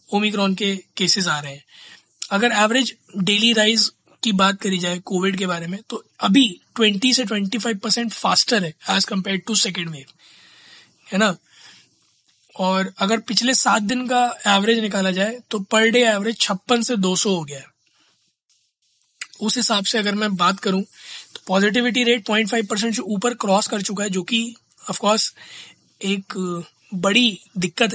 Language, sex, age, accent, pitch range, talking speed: Hindi, male, 20-39, native, 190-225 Hz, 155 wpm